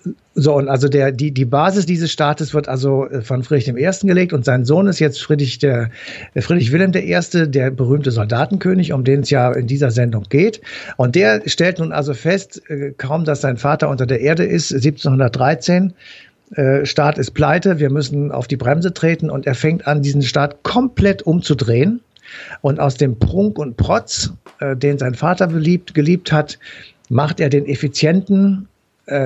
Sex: male